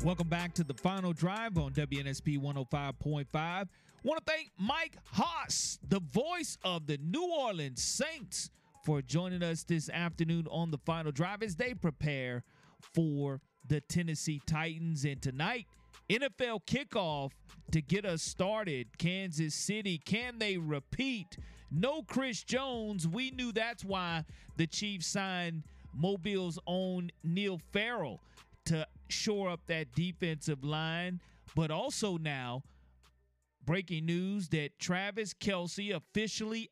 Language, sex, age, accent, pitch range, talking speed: English, male, 40-59, American, 155-190 Hz, 130 wpm